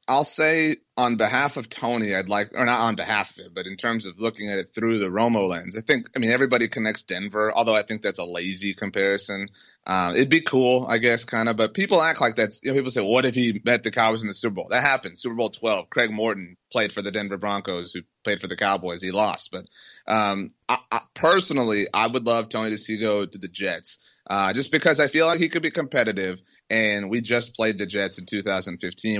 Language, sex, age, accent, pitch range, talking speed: English, male, 30-49, American, 100-125 Hz, 235 wpm